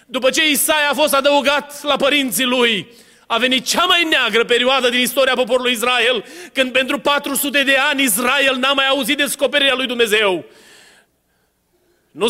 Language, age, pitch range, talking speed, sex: Romanian, 30-49, 220-280 Hz, 155 wpm, male